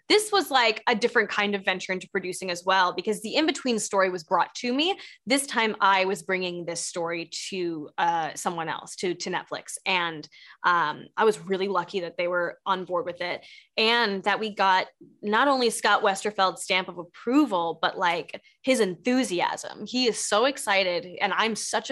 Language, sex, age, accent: English, female, 10-29, American